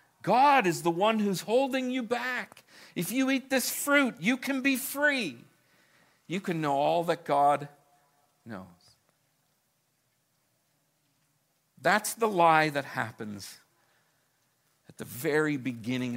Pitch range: 110-155 Hz